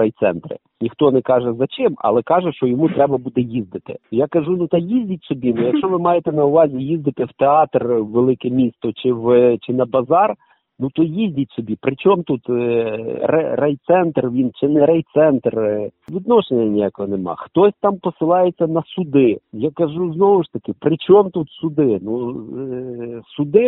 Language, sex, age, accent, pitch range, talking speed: Ukrainian, male, 50-69, native, 125-180 Hz, 175 wpm